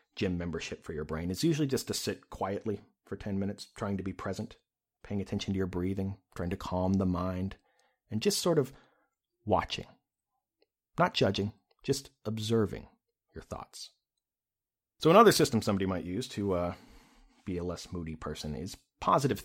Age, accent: 30-49, American